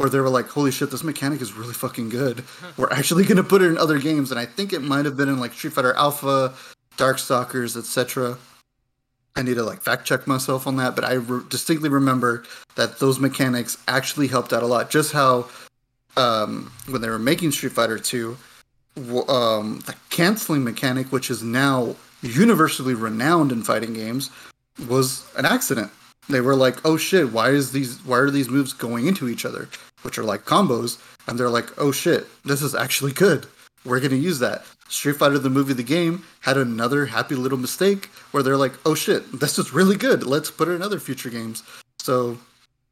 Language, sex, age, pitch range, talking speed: English, male, 30-49, 125-145 Hz, 200 wpm